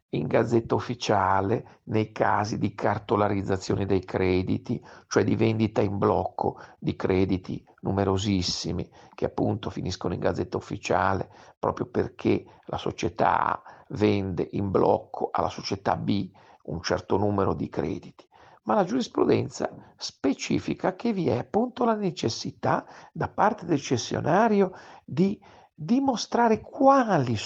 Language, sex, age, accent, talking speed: Italian, male, 50-69, native, 120 wpm